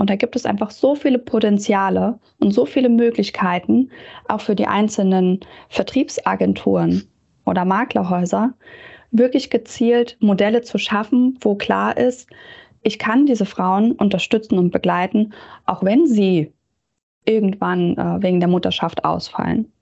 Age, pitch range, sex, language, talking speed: 20-39, 180-230 Hz, female, German, 125 wpm